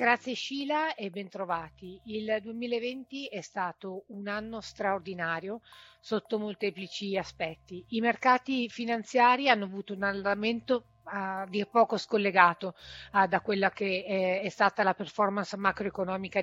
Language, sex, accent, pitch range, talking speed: Italian, female, native, 190-225 Hz, 120 wpm